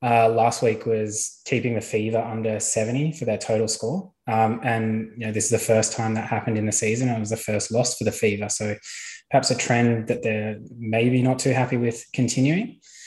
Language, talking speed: English, 215 wpm